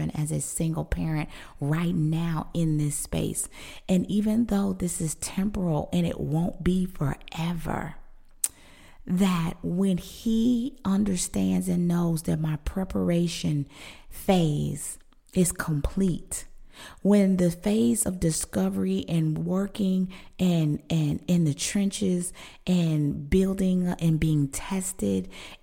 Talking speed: 115 wpm